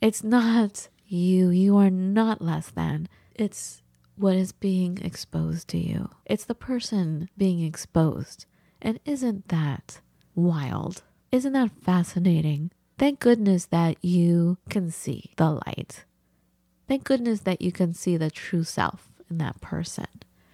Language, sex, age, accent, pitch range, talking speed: English, female, 30-49, American, 170-225 Hz, 135 wpm